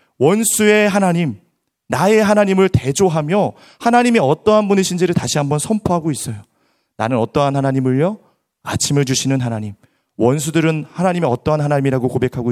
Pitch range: 135-200 Hz